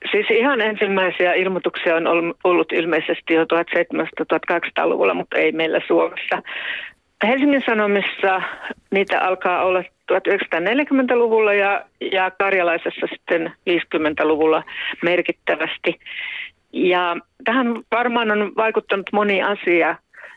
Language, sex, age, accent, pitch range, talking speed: Finnish, female, 50-69, native, 180-210 Hz, 95 wpm